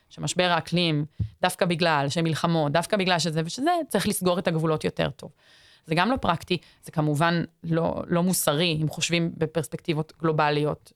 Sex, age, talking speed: female, 20-39, 155 wpm